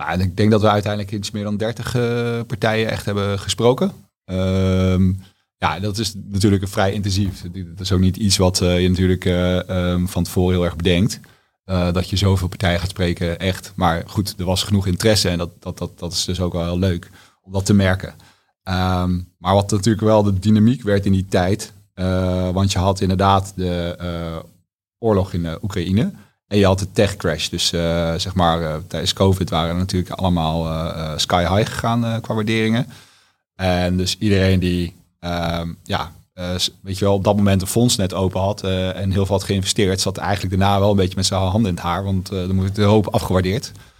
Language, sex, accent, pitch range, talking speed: Dutch, male, Dutch, 90-105 Hz, 215 wpm